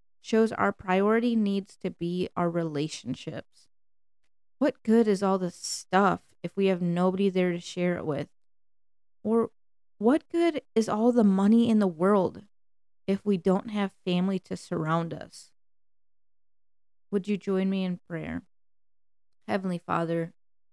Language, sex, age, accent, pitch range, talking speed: English, female, 20-39, American, 160-195 Hz, 140 wpm